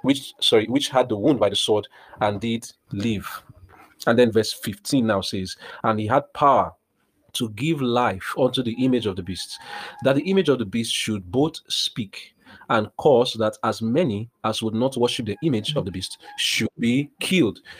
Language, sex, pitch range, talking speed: English, male, 115-140 Hz, 190 wpm